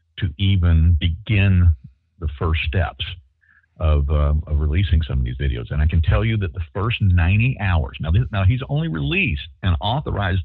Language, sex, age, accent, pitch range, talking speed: English, male, 50-69, American, 75-100 Hz, 170 wpm